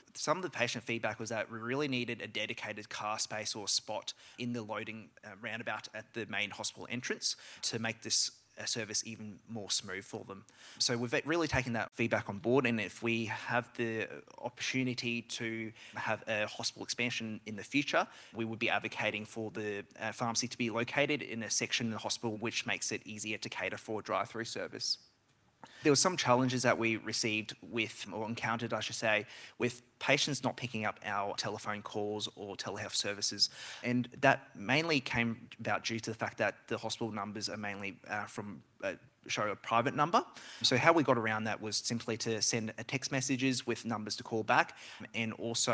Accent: Australian